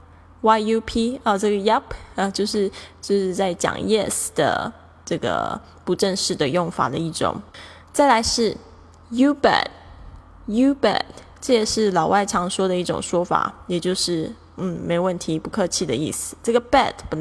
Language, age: Chinese, 10-29